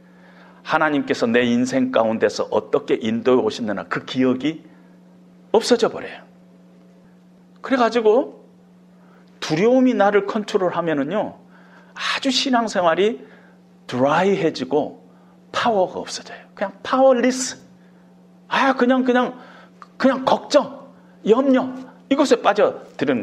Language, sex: Korean, male